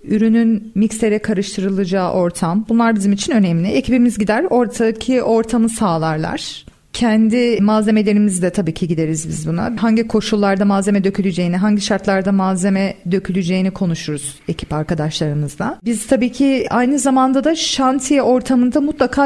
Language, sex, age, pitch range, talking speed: Turkish, female, 40-59, 195-255 Hz, 125 wpm